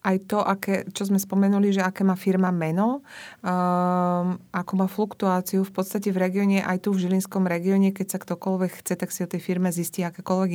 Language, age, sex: Slovak, 30-49, female